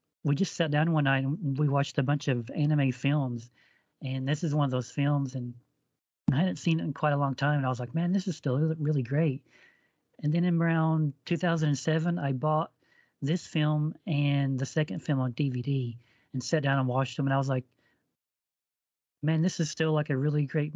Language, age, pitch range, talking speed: English, 40-59, 135-160 Hz, 215 wpm